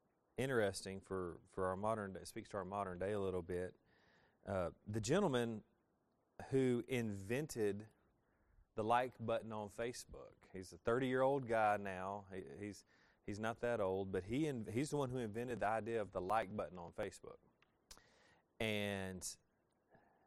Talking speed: 160 wpm